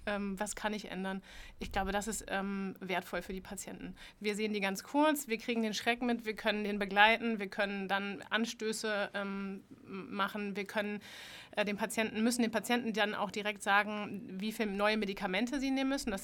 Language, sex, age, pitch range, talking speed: German, female, 30-49, 195-225 Hz, 185 wpm